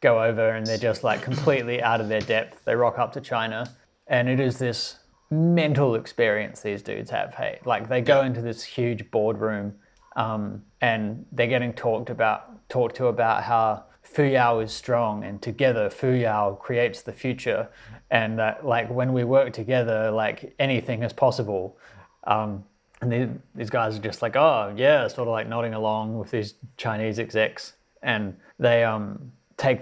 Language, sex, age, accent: English, male, 20-39, Australian